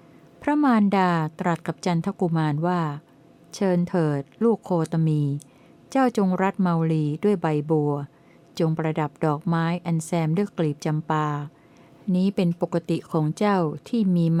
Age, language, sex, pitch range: 60-79, Thai, female, 160-185 Hz